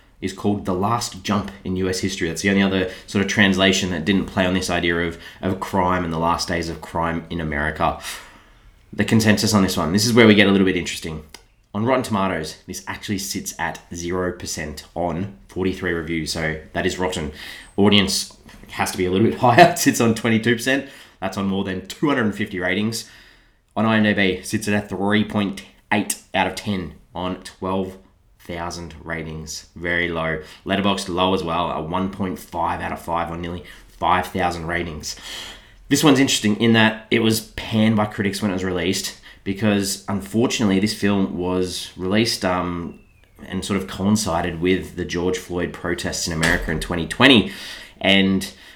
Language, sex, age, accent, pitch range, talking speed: English, male, 20-39, Australian, 85-105 Hz, 175 wpm